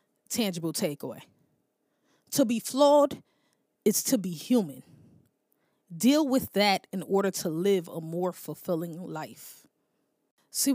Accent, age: American, 20-39